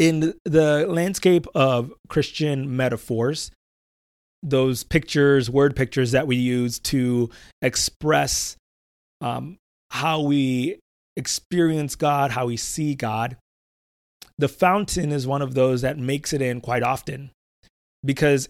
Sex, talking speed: male, 120 wpm